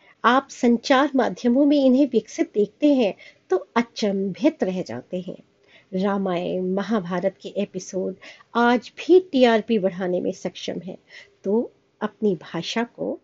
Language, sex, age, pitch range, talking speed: Hindi, female, 50-69, 190-265 Hz, 60 wpm